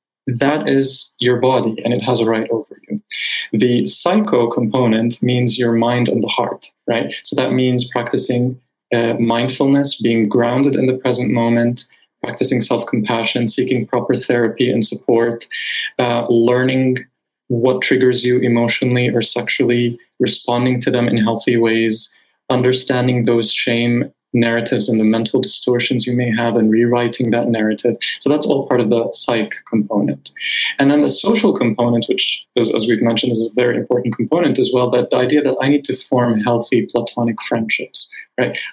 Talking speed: 165 wpm